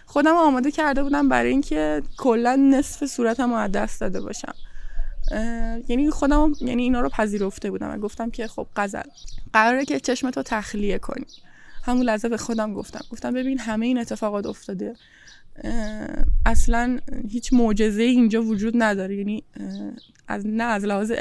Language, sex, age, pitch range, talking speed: Persian, female, 10-29, 205-250 Hz, 145 wpm